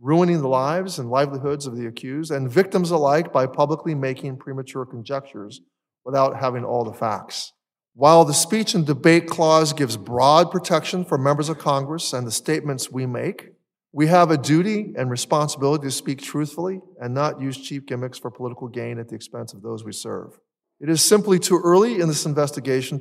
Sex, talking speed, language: male, 185 wpm, English